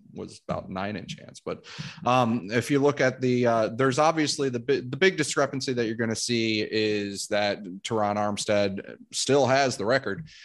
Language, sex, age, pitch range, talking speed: English, male, 30-49, 100-120 Hz, 190 wpm